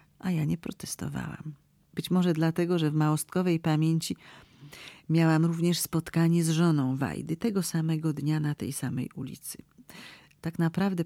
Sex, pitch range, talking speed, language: female, 145-170 Hz, 140 wpm, Polish